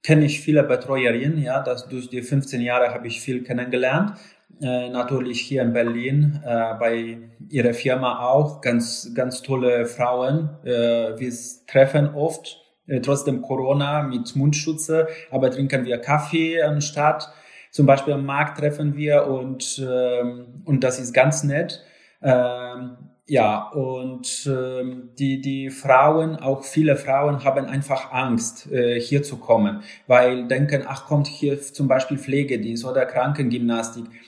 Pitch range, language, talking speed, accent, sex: 125-150 Hz, German, 145 wpm, German, male